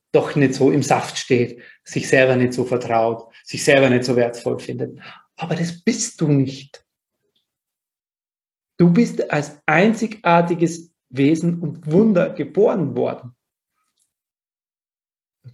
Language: German